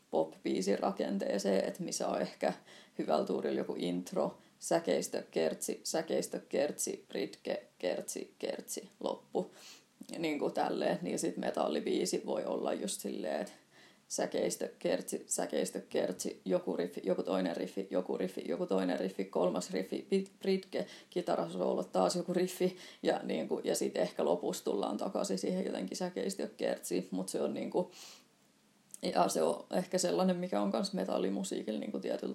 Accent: native